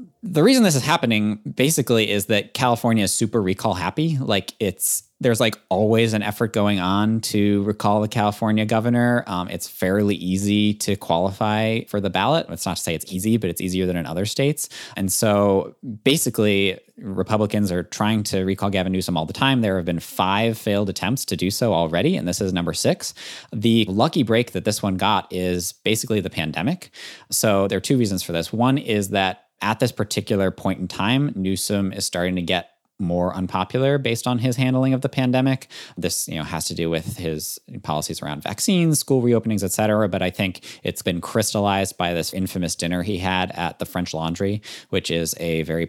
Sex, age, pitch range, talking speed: male, 20-39, 90-110 Hz, 200 wpm